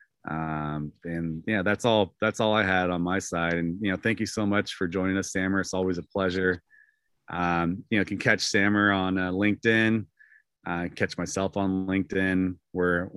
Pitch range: 90-115 Hz